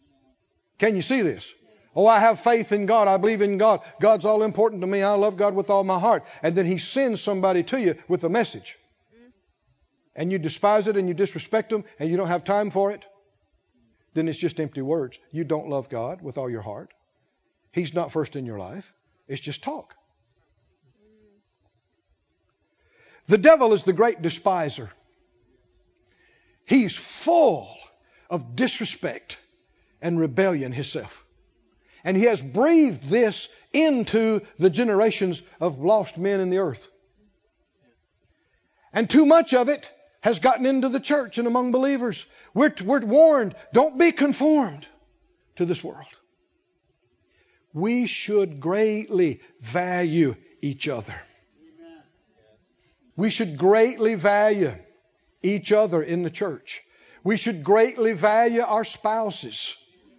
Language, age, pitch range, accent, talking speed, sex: English, 60-79, 170-235 Hz, American, 145 wpm, male